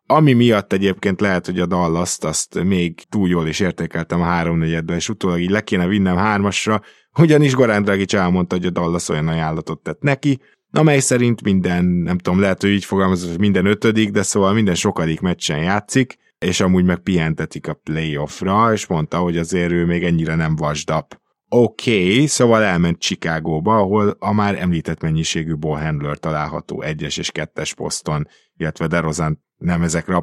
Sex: male